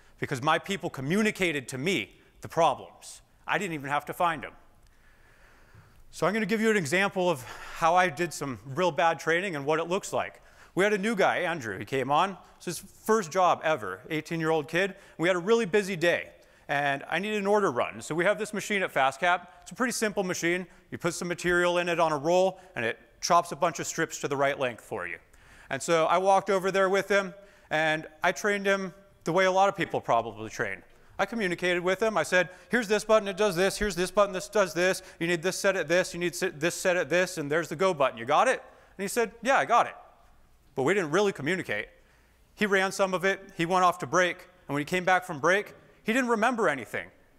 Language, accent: English, American